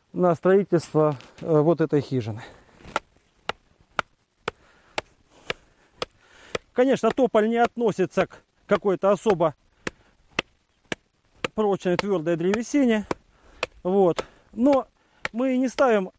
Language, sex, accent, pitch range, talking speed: Russian, male, native, 180-235 Hz, 75 wpm